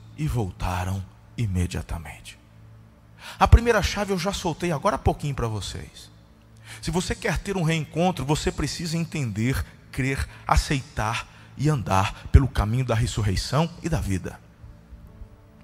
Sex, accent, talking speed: male, Brazilian, 130 wpm